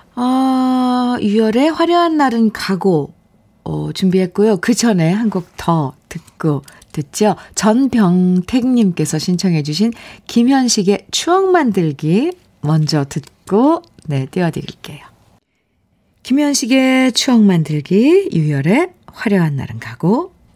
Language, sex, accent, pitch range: Korean, female, native, 160-245 Hz